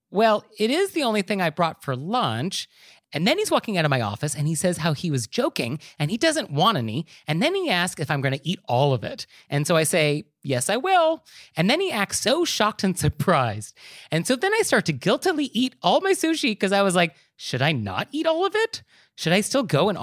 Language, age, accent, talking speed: English, 30-49, American, 250 wpm